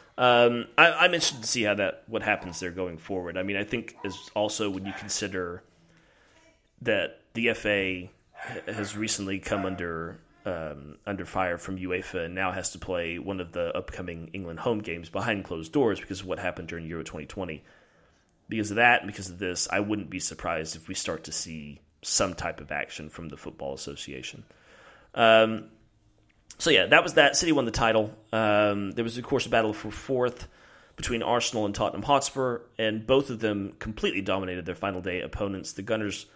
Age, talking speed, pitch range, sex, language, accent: 30-49, 190 wpm, 90-110 Hz, male, English, American